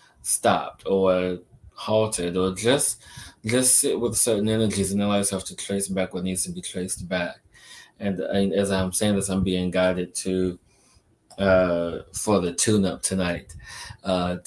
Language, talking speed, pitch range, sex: English, 160 wpm, 90-105 Hz, male